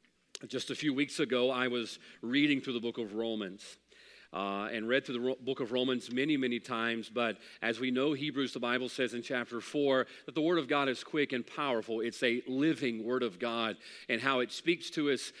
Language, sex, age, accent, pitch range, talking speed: English, male, 40-59, American, 125-160 Hz, 220 wpm